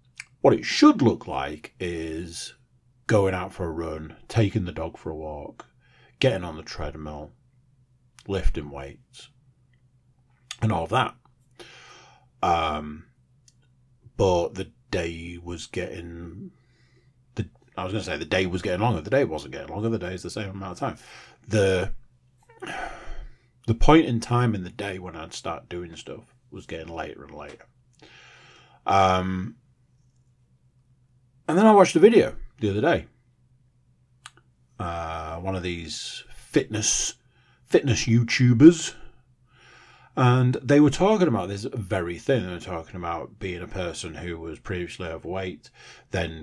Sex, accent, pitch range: male, British, 90-125 Hz